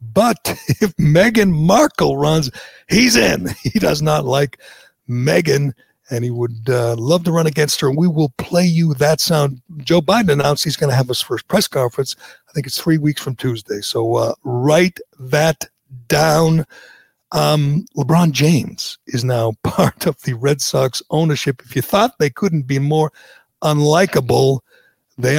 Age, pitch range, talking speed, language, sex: 60-79, 135-175 Hz, 165 wpm, English, male